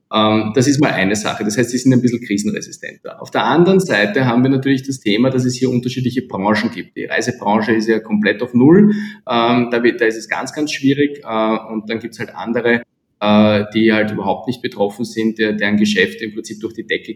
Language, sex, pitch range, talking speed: German, male, 110-135 Hz, 205 wpm